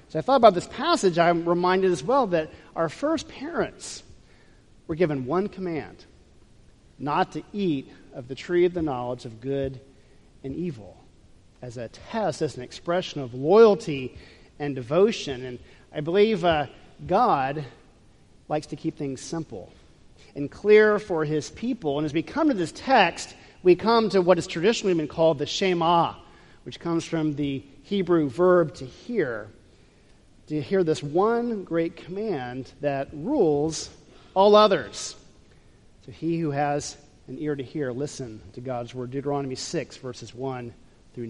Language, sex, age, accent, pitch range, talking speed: English, male, 40-59, American, 130-180 Hz, 160 wpm